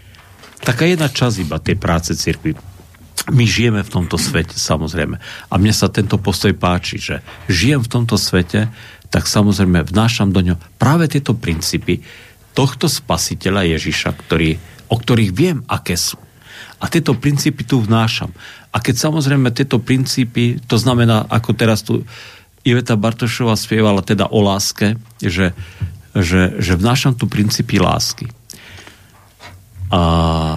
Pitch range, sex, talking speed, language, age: 90-115 Hz, male, 135 wpm, Slovak, 50-69